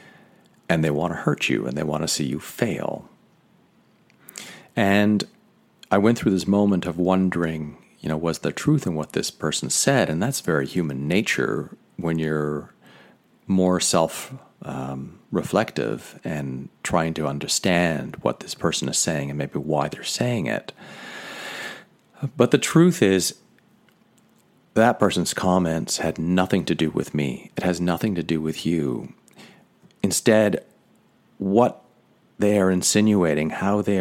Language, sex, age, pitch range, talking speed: English, male, 40-59, 80-100 Hz, 145 wpm